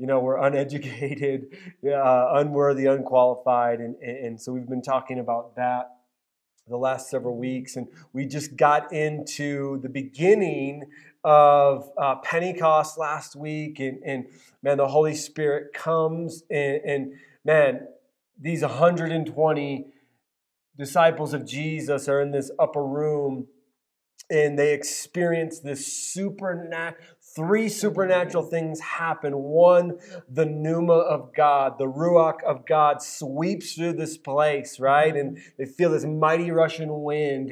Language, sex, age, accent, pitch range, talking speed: English, male, 30-49, American, 140-165 Hz, 130 wpm